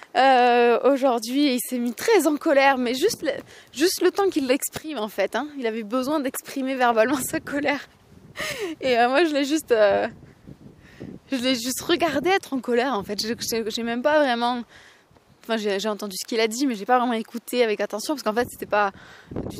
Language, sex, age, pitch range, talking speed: French, female, 20-39, 225-275 Hz, 210 wpm